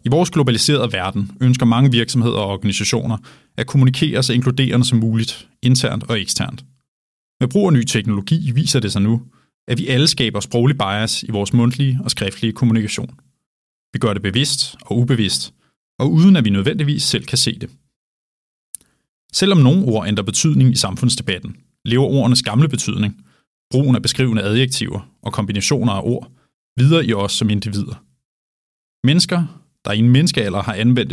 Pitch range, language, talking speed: 105-135 Hz, Danish, 165 wpm